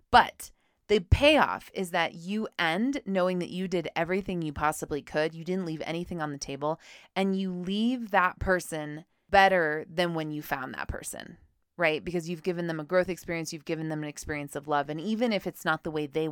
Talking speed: 210 wpm